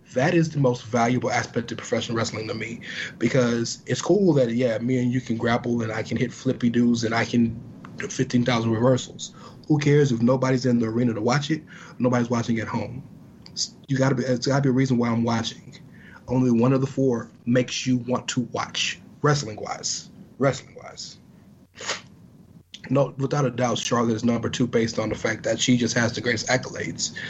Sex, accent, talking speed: male, American, 190 wpm